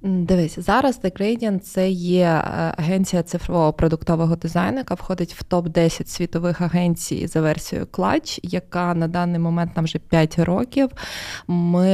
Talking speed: 145 wpm